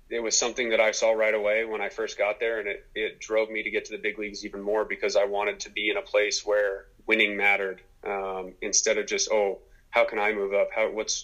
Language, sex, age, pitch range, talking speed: English, male, 30-49, 100-115 Hz, 260 wpm